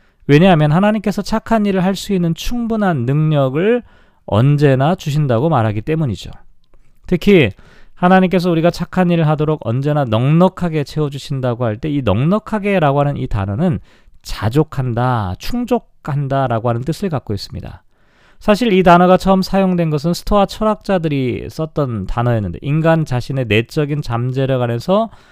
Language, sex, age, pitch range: Korean, male, 40-59, 125-185 Hz